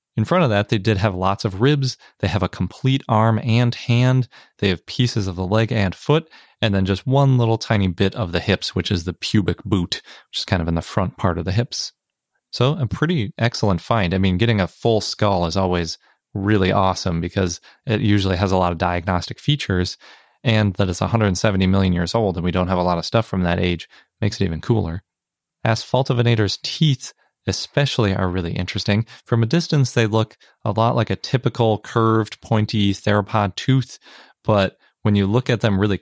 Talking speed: 205 wpm